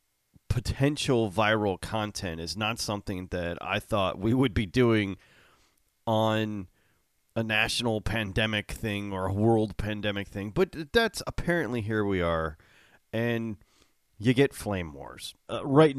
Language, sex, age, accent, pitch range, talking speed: English, male, 30-49, American, 100-135 Hz, 135 wpm